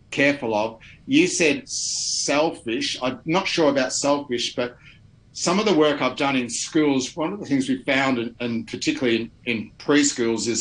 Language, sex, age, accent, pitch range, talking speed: English, male, 50-69, Australian, 115-140 Hz, 175 wpm